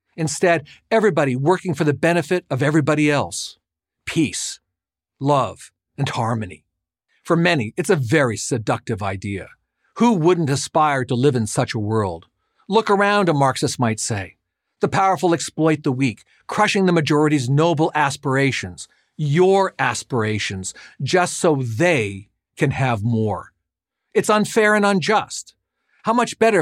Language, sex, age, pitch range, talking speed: English, male, 50-69, 120-175 Hz, 135 wpm